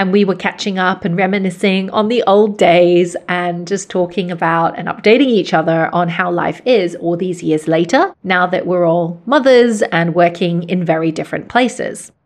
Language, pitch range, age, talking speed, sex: English, 175-220 Hz, 30-49, 185 wpm, female